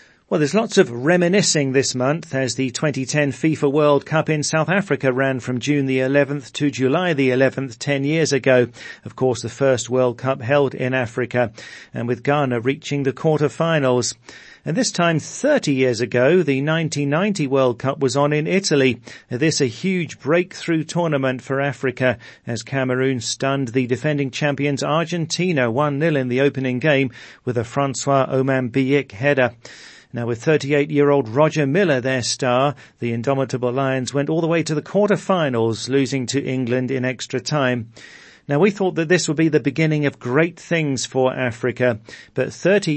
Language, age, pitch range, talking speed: English, 40-59, 130-160 Hz, 170 wpm